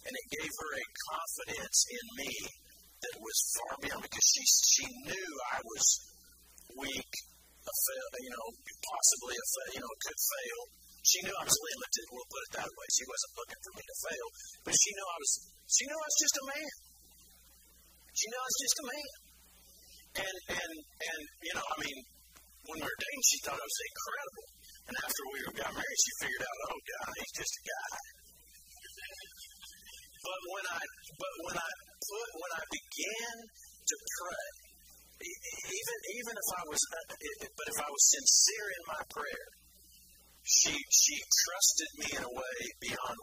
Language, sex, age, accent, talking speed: English, male, 50-69, American, 180 wpm